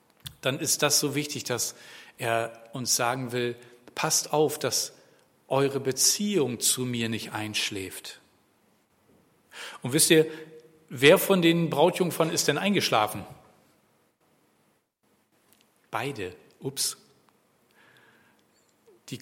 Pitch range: 115-140 Hz